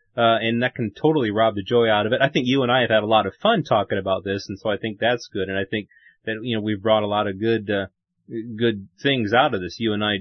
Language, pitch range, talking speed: English, 105-120 Hz, 305 wpm